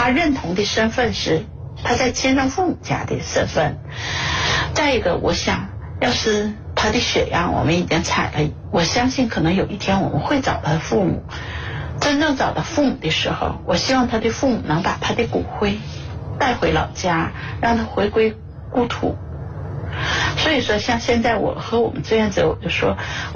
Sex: female